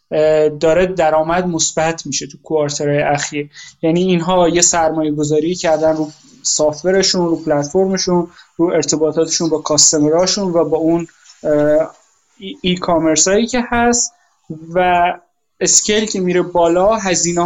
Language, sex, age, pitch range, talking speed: Persian, male, 20-39, 155-185 Hz, 120 wpm